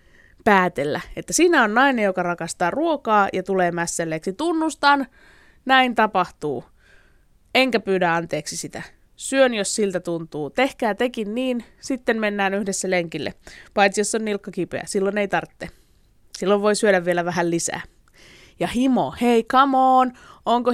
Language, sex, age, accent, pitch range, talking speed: Finnish, female, 20-39, native, 180-250 Hz, 140 wpm